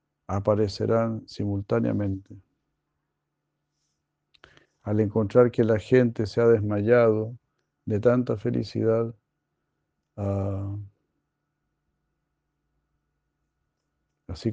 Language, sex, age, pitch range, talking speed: Spanish, male, 50-69, 100-115 Hz, 60 wpm